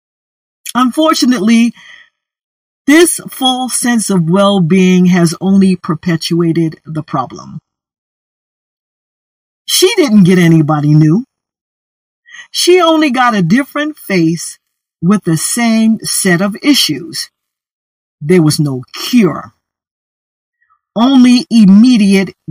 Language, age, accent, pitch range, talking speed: English, 50-69, American, 175-260 Hz, 90 wpm